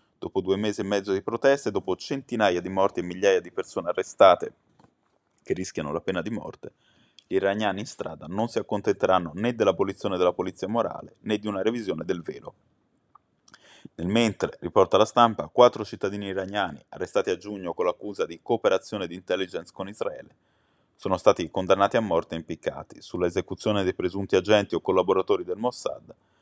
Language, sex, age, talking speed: Italian, male, 20-39, 170 wpm